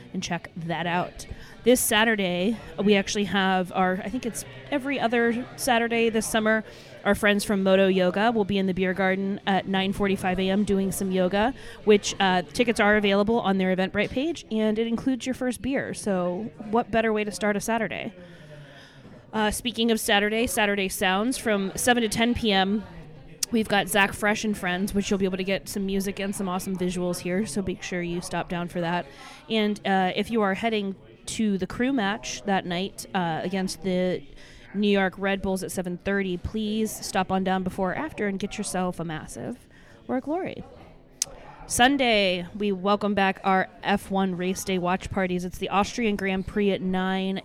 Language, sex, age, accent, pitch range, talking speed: English, female, 20-39, American, 185-215 Hz, 190 wpm